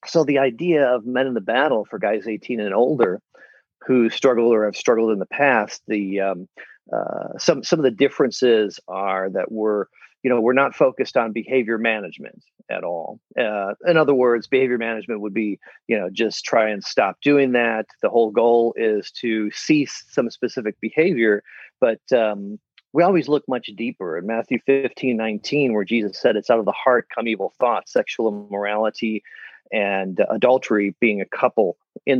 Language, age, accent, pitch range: English, 40-59, American, 105-130 Hz